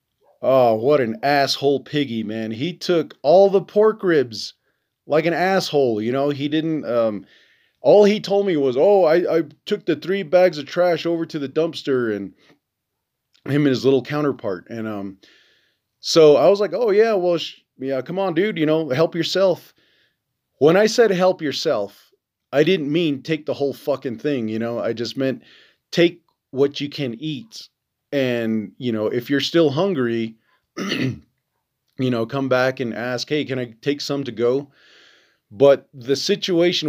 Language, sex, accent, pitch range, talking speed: English, male, American, 120-165 Hz, 175 wpm